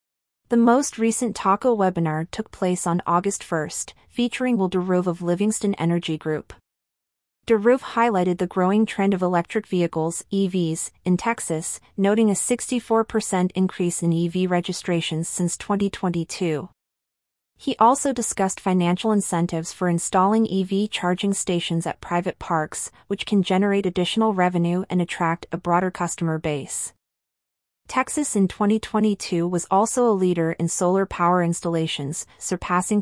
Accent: American